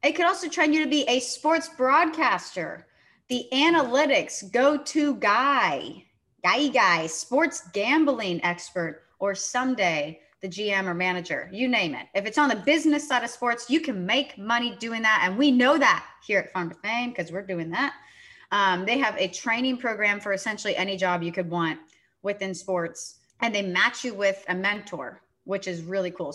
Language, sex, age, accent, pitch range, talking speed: English, female, 30-49, American, 180-240 Hz, 185 wpm